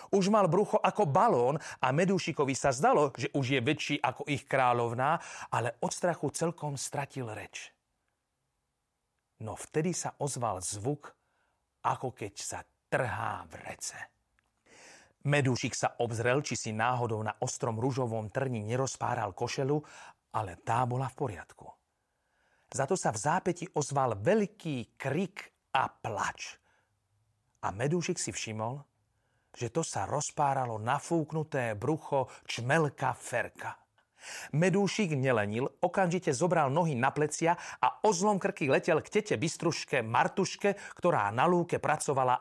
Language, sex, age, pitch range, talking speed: Slovak, male, 40-59, 120-160 Hz, 130 wpm